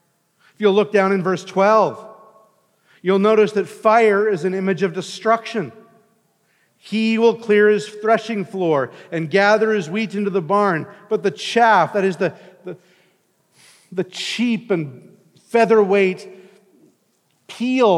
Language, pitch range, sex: English, 175-220 Hz, male